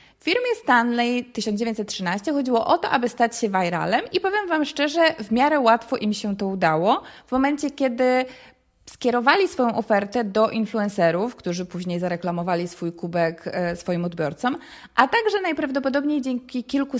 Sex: female